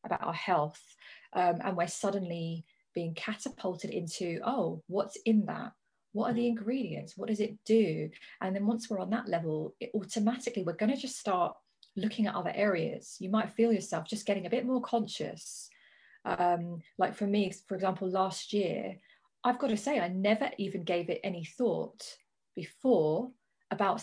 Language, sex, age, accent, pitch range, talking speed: English, female, 20-39, British, 185-230 Hz, 175 wpm